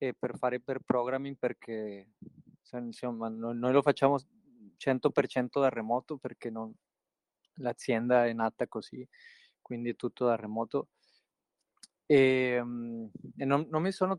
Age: 20-39